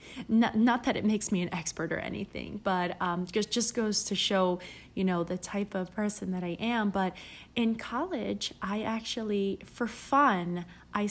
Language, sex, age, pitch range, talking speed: English, female, 30-49, 185-235 Hz, 185 wpm